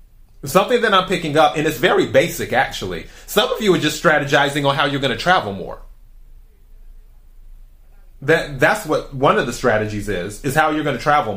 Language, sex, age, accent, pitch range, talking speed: English, male, 30-49, American, 135-160 Hz, 190 wpm